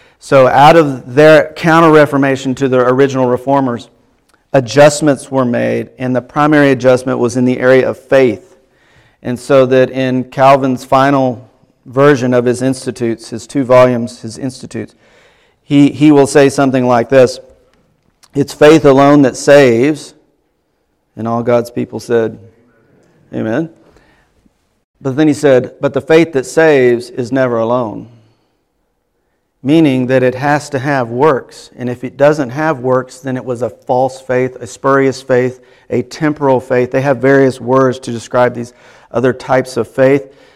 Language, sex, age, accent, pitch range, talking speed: English, male, 50-69, American, 125-140 Hz, 150 wpm